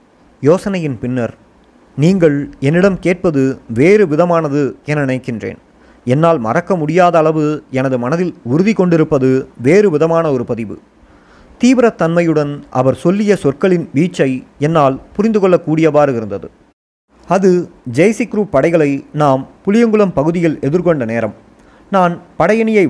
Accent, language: native, Tamil